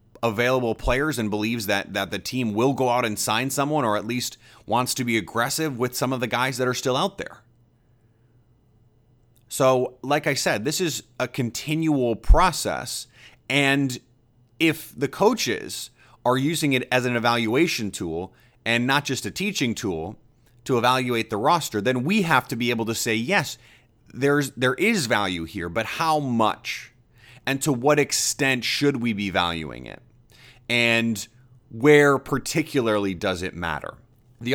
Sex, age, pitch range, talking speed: male, 30-49, 115-145 Hz, 165 wpm